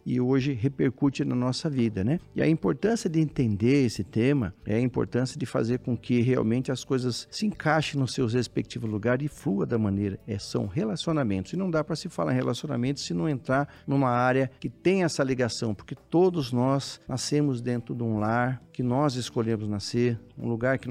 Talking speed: 200 wpm